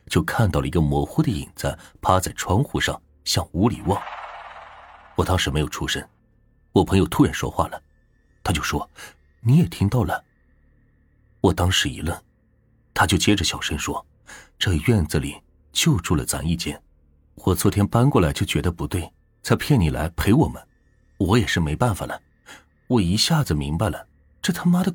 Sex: male